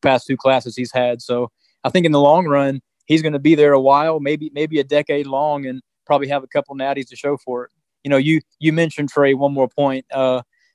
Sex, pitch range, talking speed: male, 135-155 Hz, 250 wpm